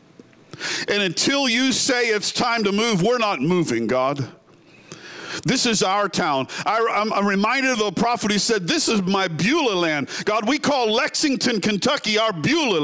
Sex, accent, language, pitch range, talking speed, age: male, American, English, 175-250 Hz, 175 wpm, 50-69